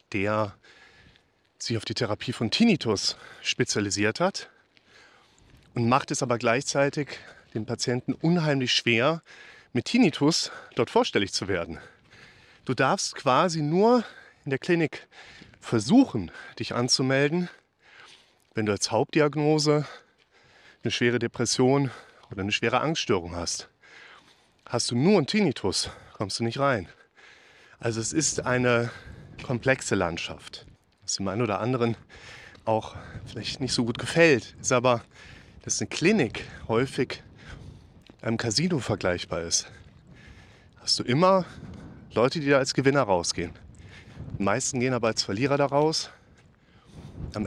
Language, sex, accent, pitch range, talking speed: German, male, German, 110-140 Hz, 125 wpm